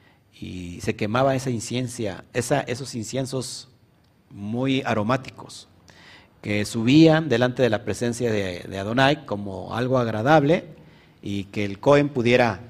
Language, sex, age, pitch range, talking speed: Spanish, male, 50-69, 110-145 Hz, 125 wpm